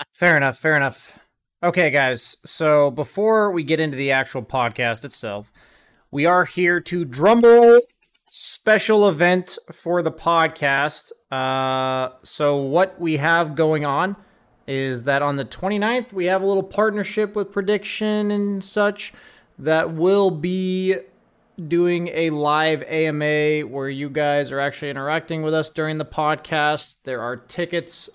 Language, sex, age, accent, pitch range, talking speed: English, male, 20-39, American, 140-175 Hz, 145 wpm